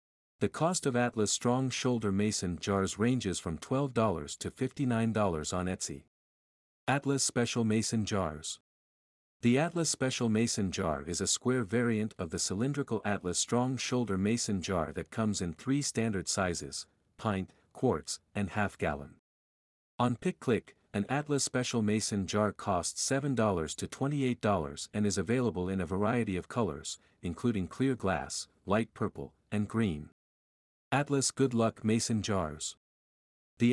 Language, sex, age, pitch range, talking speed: English, male, 50-69, 95-125 Hz, 140 wpm